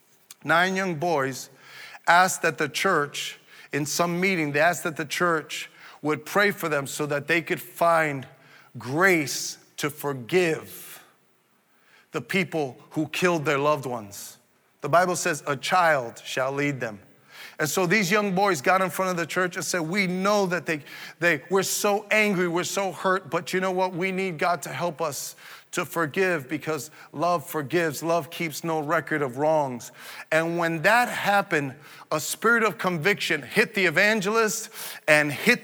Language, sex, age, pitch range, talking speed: English, male, 40-59, 145-185 Hz, 170 wpm